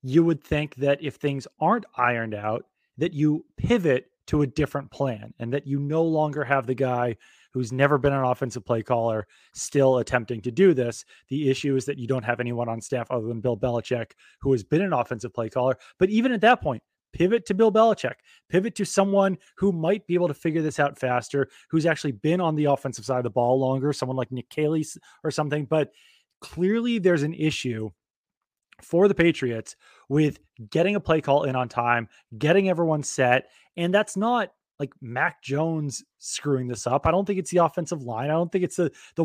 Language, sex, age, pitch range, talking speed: English, male, 30-49, 125-165 Hz, 210 wpm